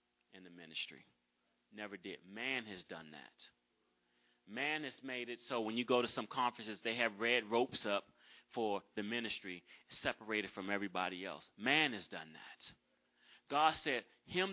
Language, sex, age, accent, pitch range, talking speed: English, male, 30-49, American, 110-175 Hz, 160 wpm